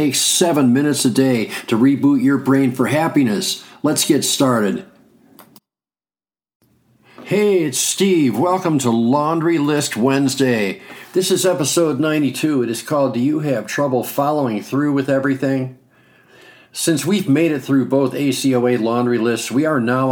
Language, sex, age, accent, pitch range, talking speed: English, male, 50-69, American, 125-150 Hz, 145 wpm